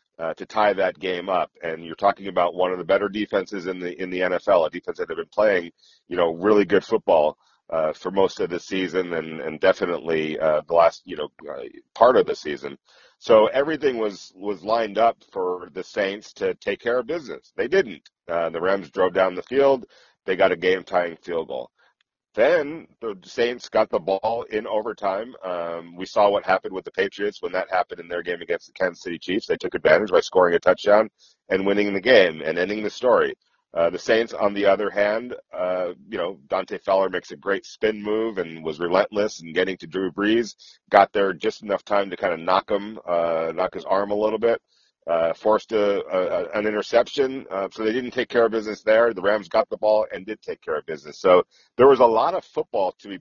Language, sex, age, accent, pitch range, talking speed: English, male, 40-59, American, 90-135 Hz, 225 wpm